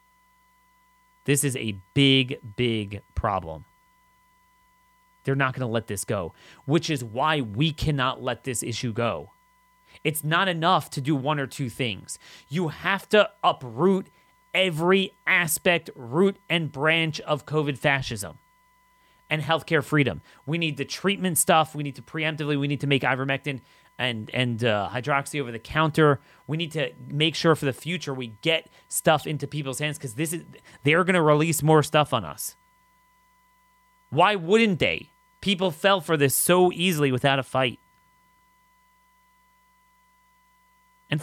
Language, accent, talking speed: English, American, 150 wpm